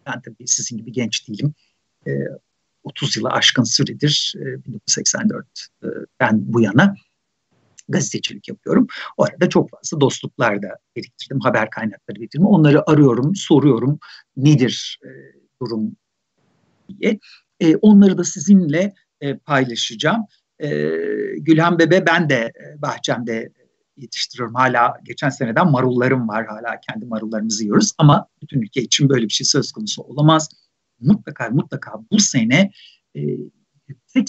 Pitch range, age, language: 125-170 Hz, 60-79, Turkish